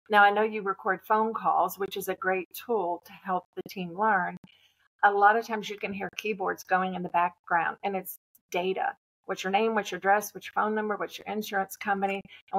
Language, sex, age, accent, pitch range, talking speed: English, female, 50-69, American, 185-220 Hz, 225 wpm